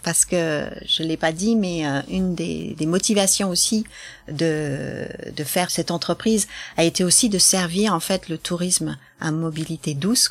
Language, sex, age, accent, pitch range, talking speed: French, female, 40-59, French, 155-195 Hz, 175 wpm